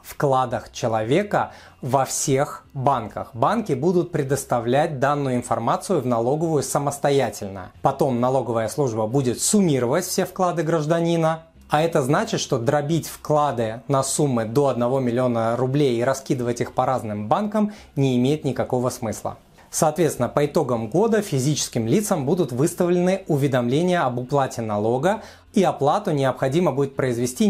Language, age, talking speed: Russian, 30-49, 130 wpm